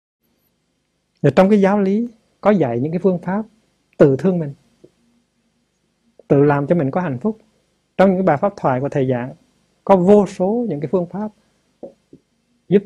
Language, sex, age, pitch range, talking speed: Vietnamese, male, 60-79, 130-180 Hz, 175 wpm